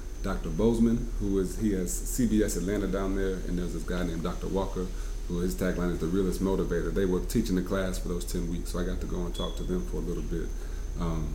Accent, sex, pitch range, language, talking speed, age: American, male, 85-100 Hz, English, 250 wpm, 30-49